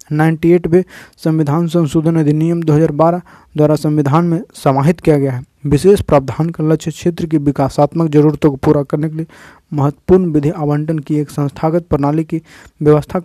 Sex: male